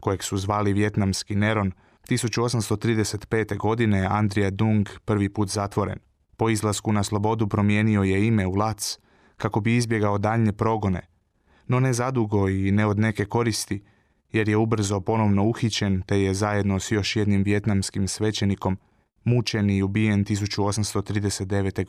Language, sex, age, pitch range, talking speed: Croatian, male, 20-39, 100-110 Hz, 135 wpm